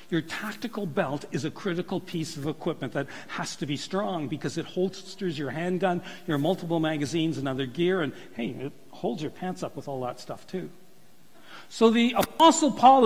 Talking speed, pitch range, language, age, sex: 190 wpm, 170-225 Hz, English, 60-79, male